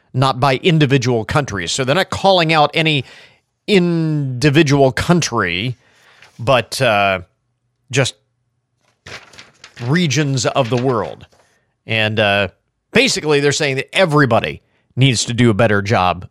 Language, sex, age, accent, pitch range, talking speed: English, male, 40-59, American, 120-170 Hz, 120 wpm